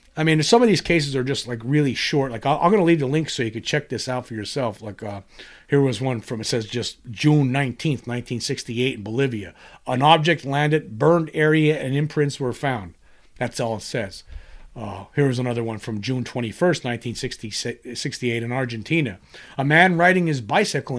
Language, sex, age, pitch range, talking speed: English, male, 40-59, 125-170 Hz, 195 wpm